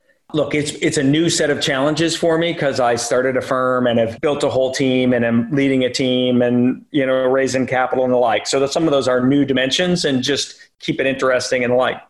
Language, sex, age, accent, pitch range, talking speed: English, male, 40-59, American, 120-140 Hz, 250 wpm